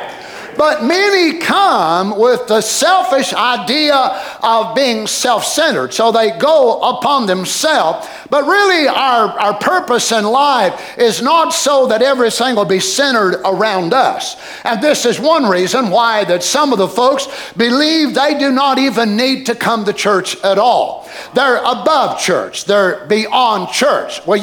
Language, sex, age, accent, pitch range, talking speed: English, male, 50-69, American, 215-295 Hz, 150 wpm